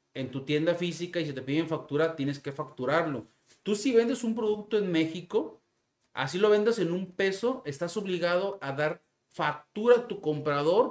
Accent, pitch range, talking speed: Mexican, 150-195 Hz, 180 wpm